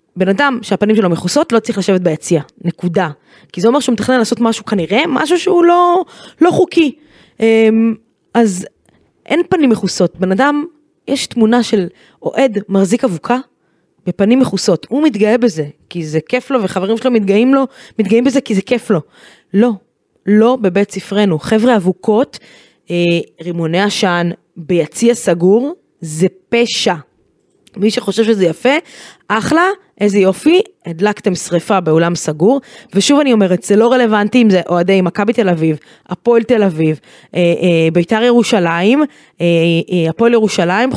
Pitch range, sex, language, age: 180-245 Hz, female, Hebrew, 20-39